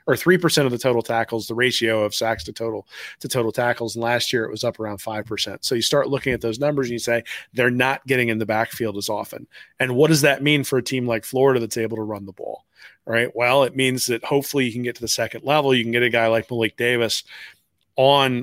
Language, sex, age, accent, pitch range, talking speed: English, male, 30-49, American, 115-135 Hz, 255 wpm